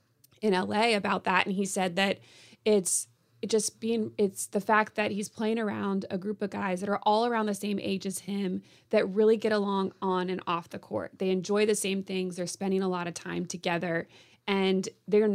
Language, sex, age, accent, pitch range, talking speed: English, female, 20-39, American, 185-210 Hz, 210 wpm